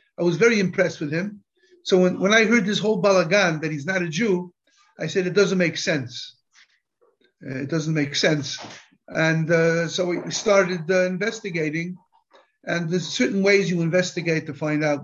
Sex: male